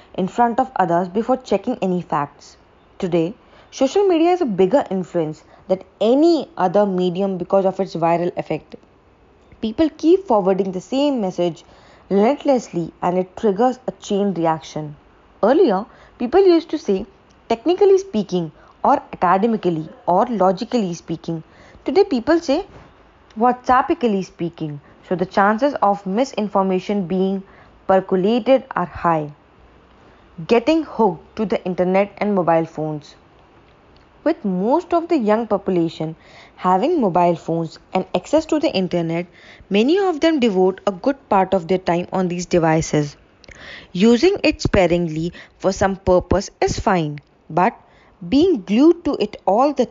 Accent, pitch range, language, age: Indian, 175-245 Hz, English, 20-39